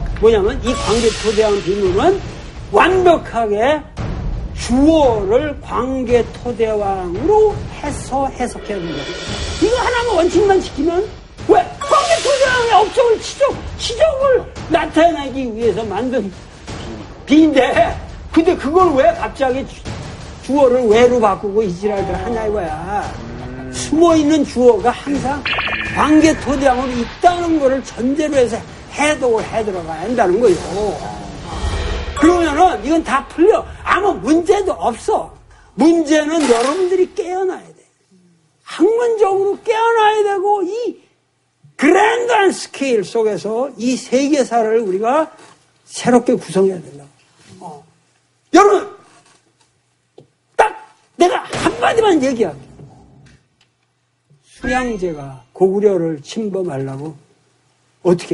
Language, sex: Korean, male